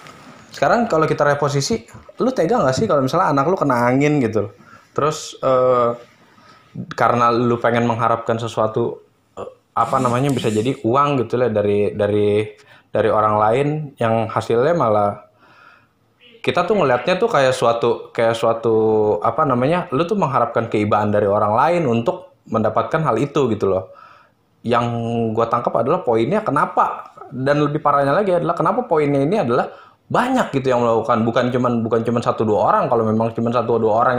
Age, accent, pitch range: 20-39, native, 115-145 Hz